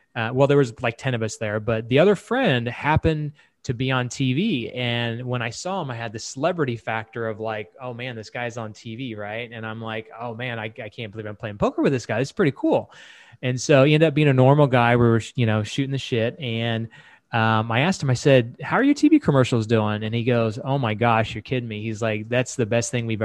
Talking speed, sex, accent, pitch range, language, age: 260 wpm, male, American, 115-150 Hz, English, 20-39